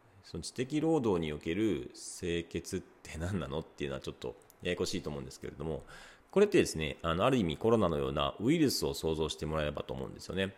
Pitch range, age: 80-115 Hz, 40-59